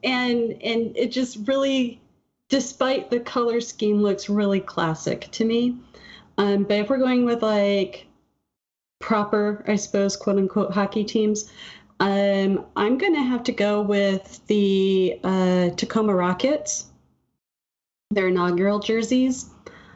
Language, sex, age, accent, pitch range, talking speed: English, female, 30-49, American, 170-215 Hz, 125 wpm